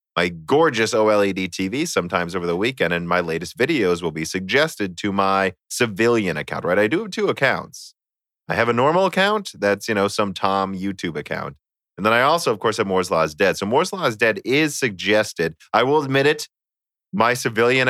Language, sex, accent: English, male, American